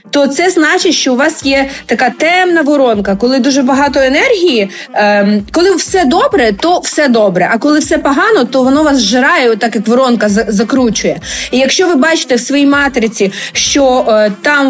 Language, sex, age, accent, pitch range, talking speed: Ukrainian, female, 20-39, native, 240-305 Hz, 175 wpm